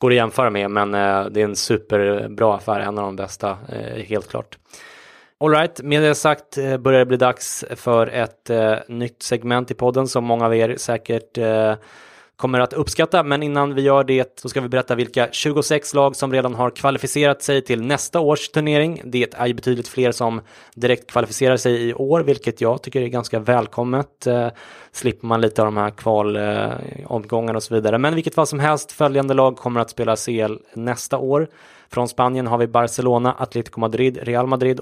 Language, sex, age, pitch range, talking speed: English, male, 20-39, 115-135 Hz, 190 wpm